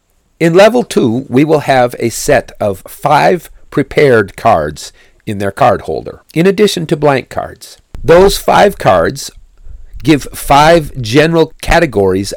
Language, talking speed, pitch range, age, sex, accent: English, 135 wpm, 115-165 Hz, 50-69, male, American